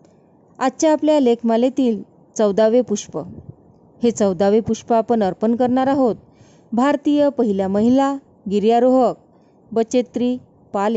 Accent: native